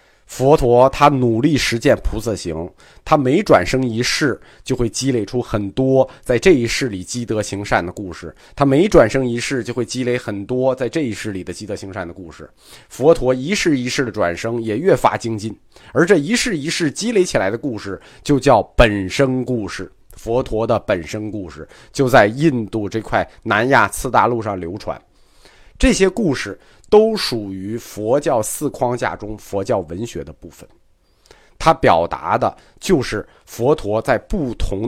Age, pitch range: 30-49, 95-130 Hz